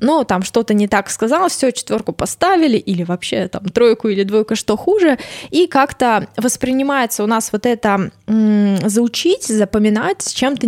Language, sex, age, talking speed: Russian, female, 20-39, 165 wpm